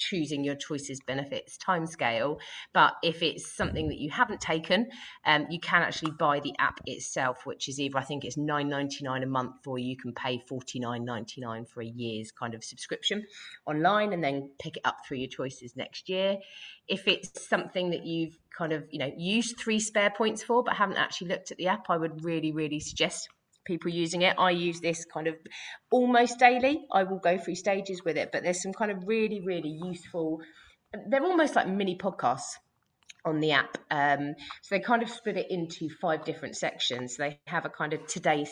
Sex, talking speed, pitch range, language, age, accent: female, 200 wpm, 140-185 Hz, English, 30-49, British